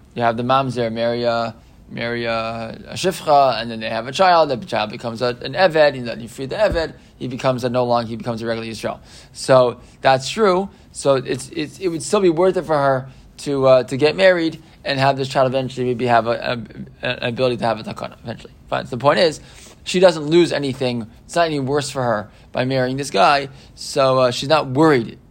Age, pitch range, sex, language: 20-39, 120-140 Hz, male, English